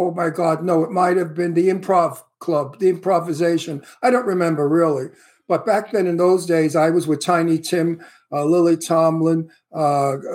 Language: English